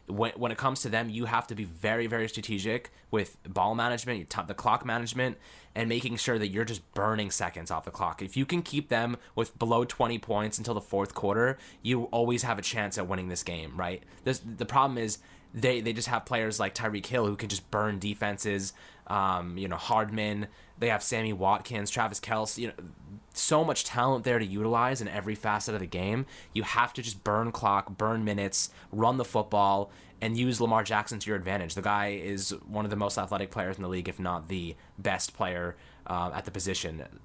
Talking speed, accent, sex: 215 wpm, American, male